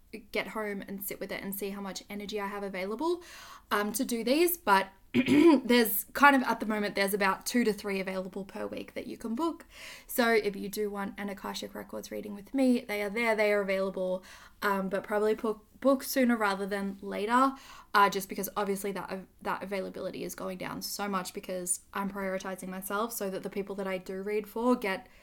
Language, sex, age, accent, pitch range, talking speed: English, female, 10-29, Australian, 190-225 Hz, 210 wpm